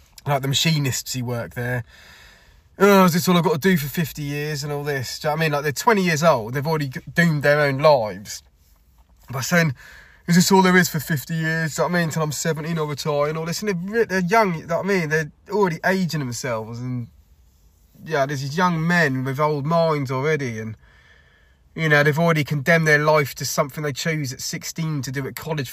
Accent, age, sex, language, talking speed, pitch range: British, 20-39, male, English, 240 wpm, 115-155 Hz